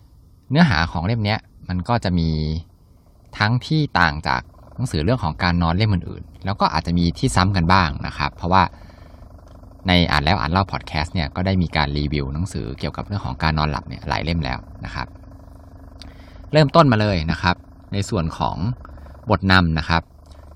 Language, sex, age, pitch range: Thai, male, 20-39, 85-110 Hz